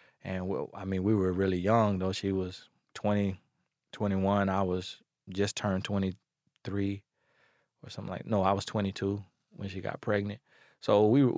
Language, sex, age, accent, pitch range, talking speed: English, male, 20-39, American, 95-115 Hz, 170 wpm